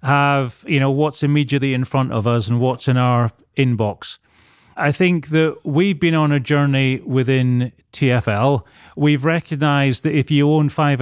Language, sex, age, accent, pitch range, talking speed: English, male, 30-49, British, 130-155 Hz, 170 wpm